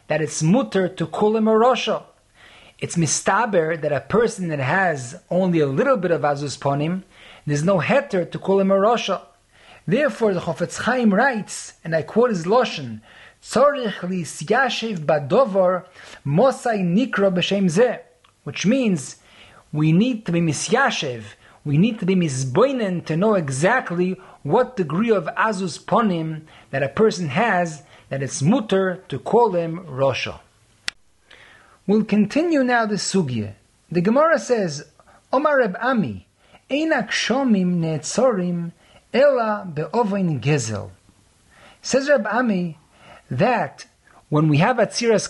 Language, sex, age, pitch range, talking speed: English, male, 40-59, 155-225 Hz, 140 wpm